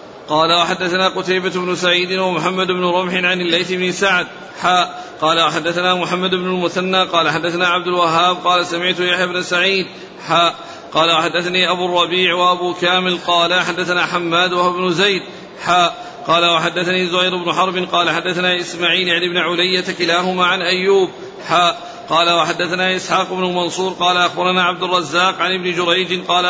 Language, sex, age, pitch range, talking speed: Arabic, male, 40-59, 170-185 Hz, 155 wpm